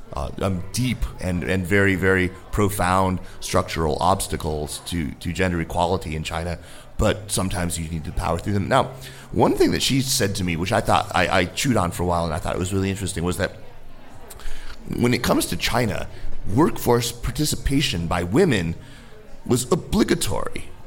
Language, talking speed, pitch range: English, 180 wpm, 90-110 Hz